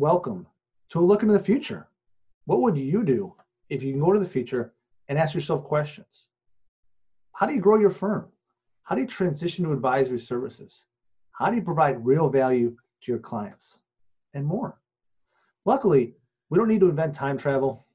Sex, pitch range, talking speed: male, 125-170 Hz, 180 wpm